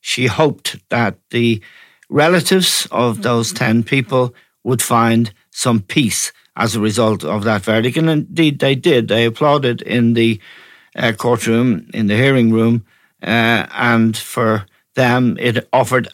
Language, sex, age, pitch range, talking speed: English, male, 60-79, 115-135 Hz, 145 wpm